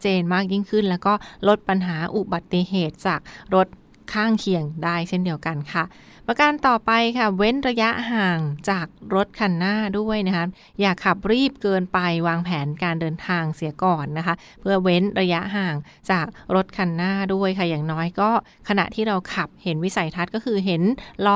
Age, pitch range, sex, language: 20-39, 175-210 Hz, female, Thai